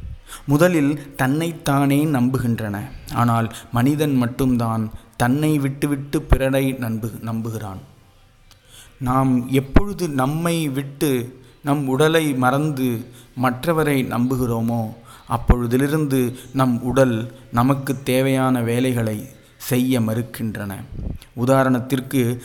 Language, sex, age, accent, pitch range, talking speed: Tamil, male, 30-49, native, 120-135 Hz, 80 wpm